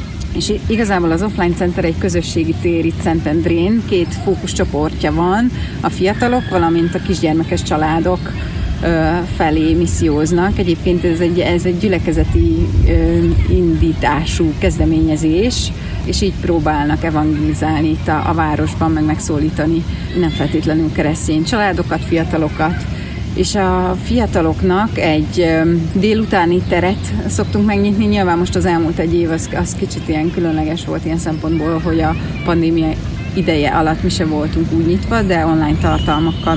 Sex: female